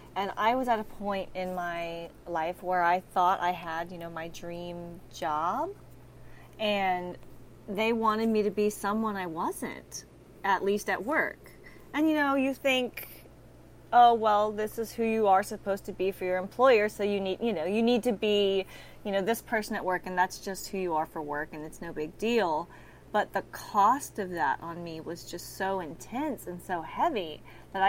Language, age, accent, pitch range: English, 20-39, American, 175-215 Hz